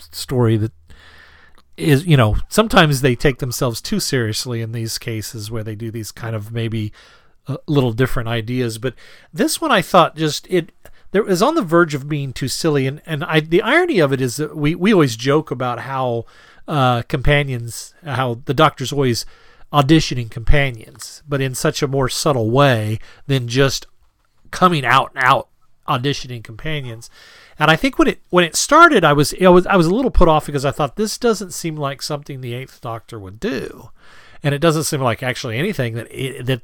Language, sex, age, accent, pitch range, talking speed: English, male, 40-59, American, 120-160 Hz, 195 wpm